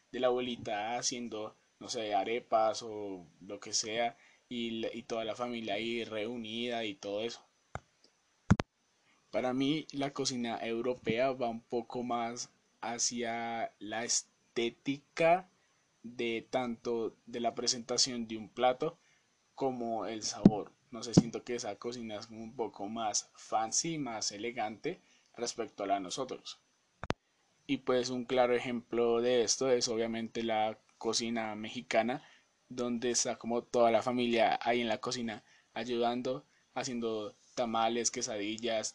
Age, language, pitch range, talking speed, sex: 20-39, Spanish, 115-125 Hz, 135 wpm, male